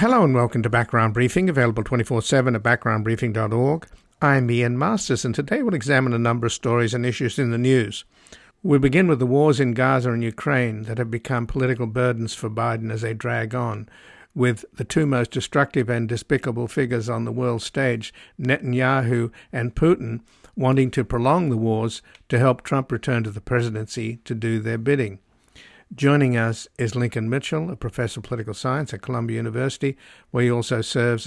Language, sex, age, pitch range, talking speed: English, male, 60-79, 115-130 Hz, 180 wpm